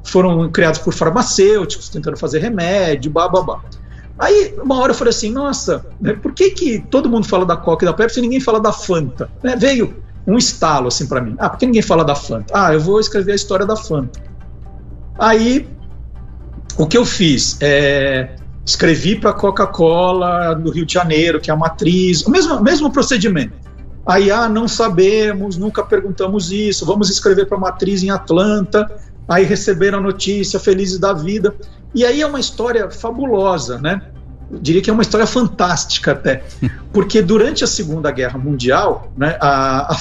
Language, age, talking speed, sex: Portuguese, 50-69, 180 wpm, male